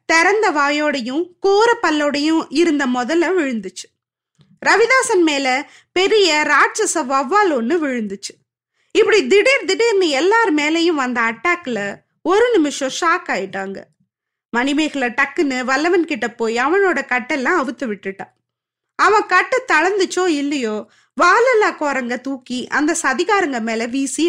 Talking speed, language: 110 wpm, Tamil